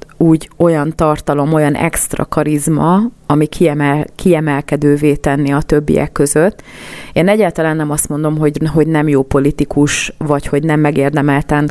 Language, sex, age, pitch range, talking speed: Hungarian, female, 30-49, 145-160 Hz, 140 wpm